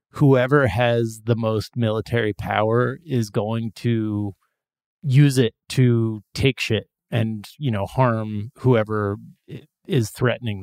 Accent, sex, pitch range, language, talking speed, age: American, male, 110-130 Hz, English, 120 wpm, 30-49